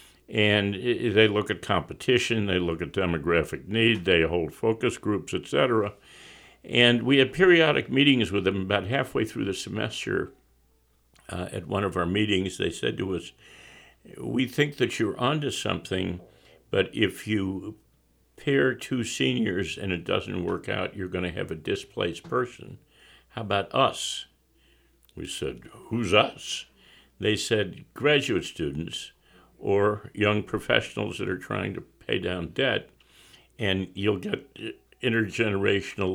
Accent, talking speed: American, 145 wpm